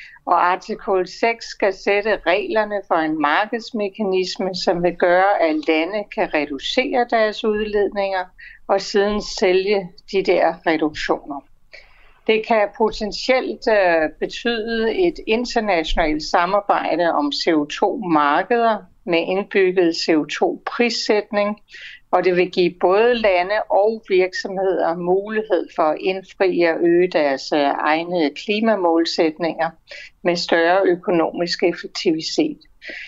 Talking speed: 110 wpm